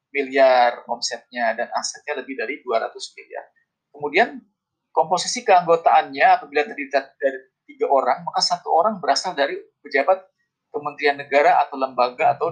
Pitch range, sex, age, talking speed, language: 135-205 Hz, male, 20-39, 130 wpm, Indonesian